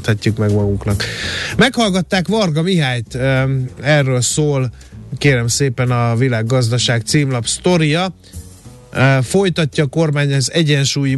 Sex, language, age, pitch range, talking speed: male, Hungarian, 30-49, 120-145 Hz, 95 wpm